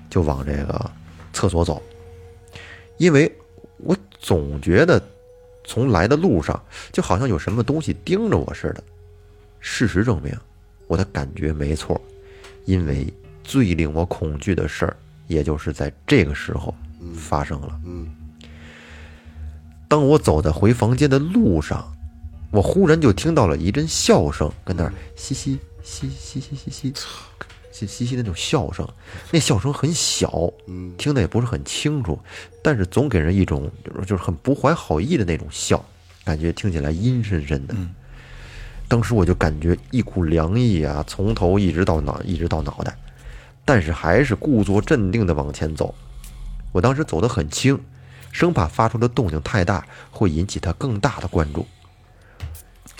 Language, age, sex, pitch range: Chinese, 30-49, male, 80-115 Hz